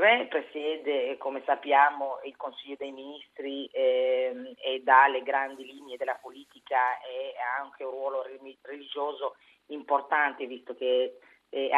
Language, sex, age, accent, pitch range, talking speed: Italian, female, 30-49, native, 130-160 Hz, 135 wpm